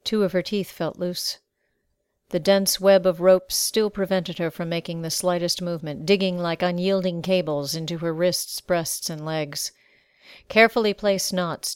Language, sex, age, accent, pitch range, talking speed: English, female, 50-69, American, 170-195 Hz, 165 wpm